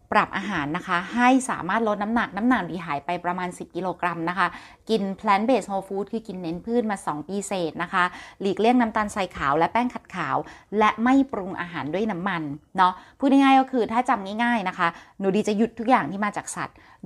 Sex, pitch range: female, 175-220 Hz